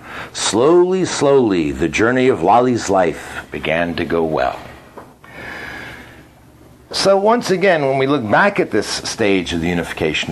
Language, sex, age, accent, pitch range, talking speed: English, male, 60-79, American, 110-155 Hz, 140 wpm